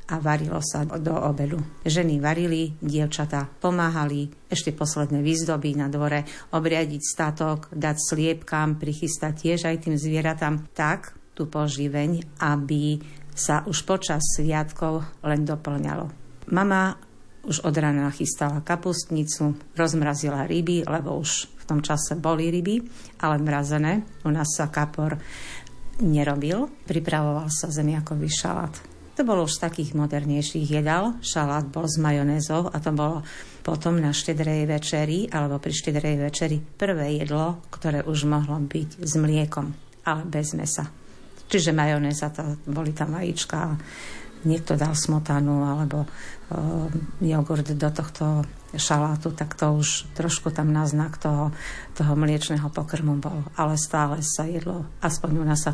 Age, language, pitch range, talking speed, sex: 50-69, Slovak, 150-160 Hz, 135 wpm, female